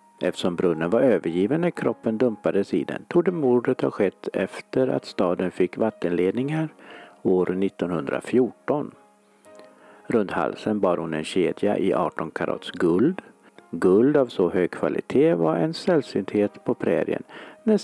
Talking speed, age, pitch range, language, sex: 140 wpm, 60-79, 100-160 Hz, Swedish, male